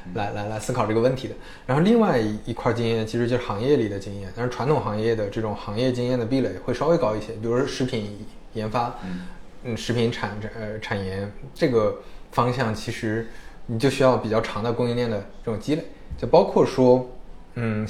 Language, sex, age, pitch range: Chinese, male, 20-39, 110-135 Hz